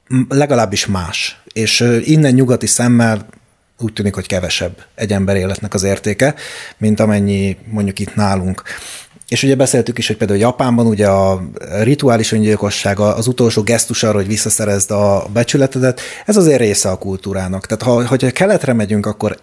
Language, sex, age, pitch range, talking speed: Hungarian, male, 30-49, 105-130 Hz, 150 wpm